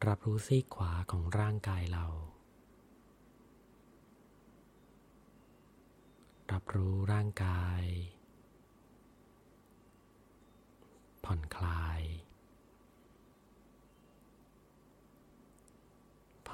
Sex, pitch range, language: male, 90-115 Hz, Thai